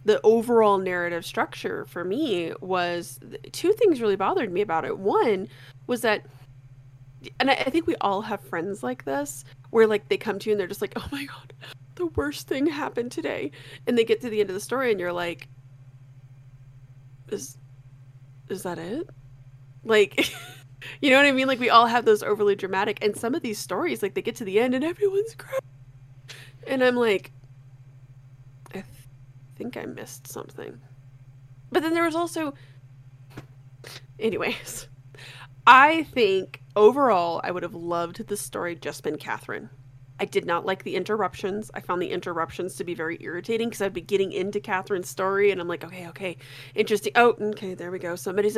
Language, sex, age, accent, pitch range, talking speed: English, female, 20-39, American, 130-220 Hz, 180 wpm